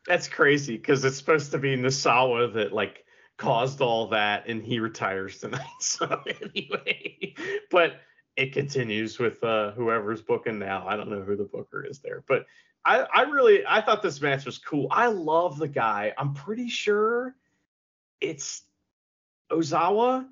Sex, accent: male, American